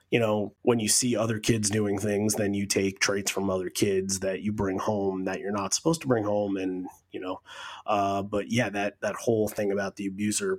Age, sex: 30-49, male